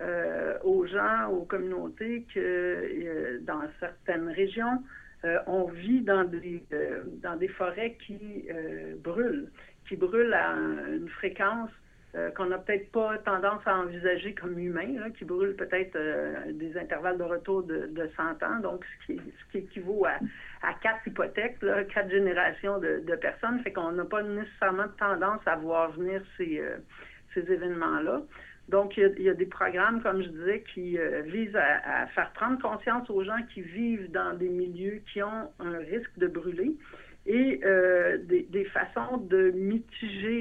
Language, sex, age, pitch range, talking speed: English, female, 60-79, 175-225 Hz, 175 wpm